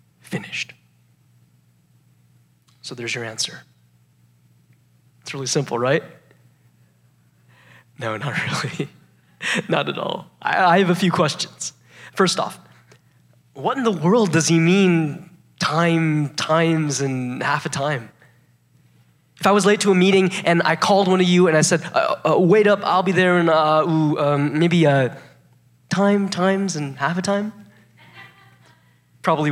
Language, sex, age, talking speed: English, male, 20-39, 145 wpm